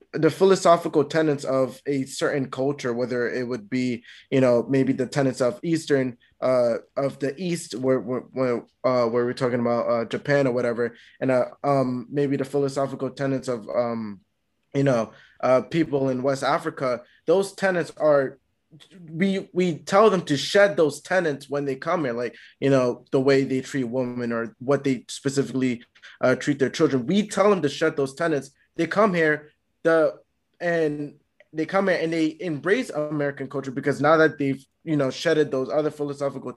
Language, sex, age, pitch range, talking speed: English, male, 20-39, 130-155 Hz, 180 wpm